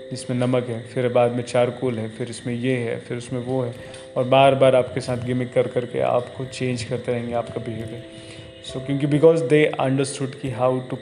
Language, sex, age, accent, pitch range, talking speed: Hindi, male, 20-39, native, 125-135 Hz, 210 wpm